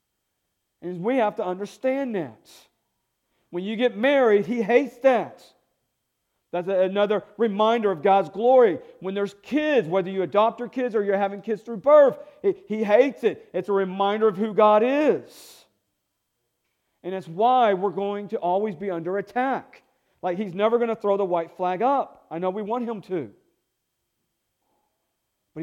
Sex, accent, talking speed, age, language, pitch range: male, American, 165 wpm, 50-69, English, 175-220 Hz